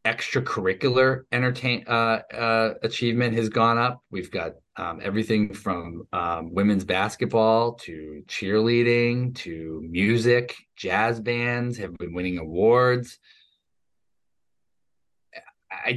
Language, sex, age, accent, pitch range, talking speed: English, male, 30-49, American, 100-120 Hz, 100 wpm